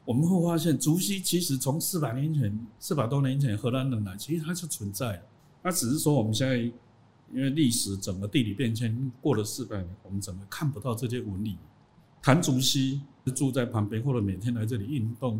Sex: male